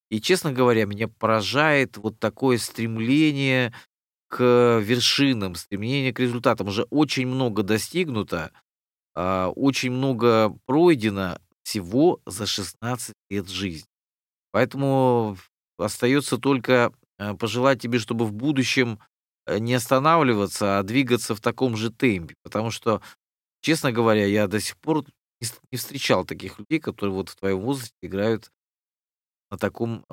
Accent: native